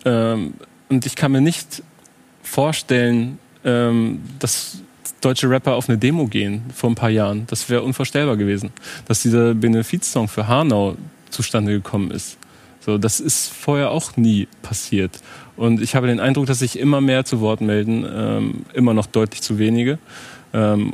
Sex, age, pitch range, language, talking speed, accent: male, 30-49, 110-125 Hz, German, 165 wpm, German